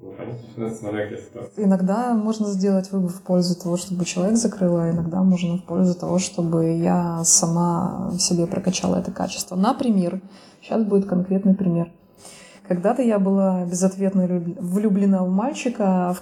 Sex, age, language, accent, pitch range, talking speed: female, 20-39, Russian, native, 175-195 Hz, 135 wpm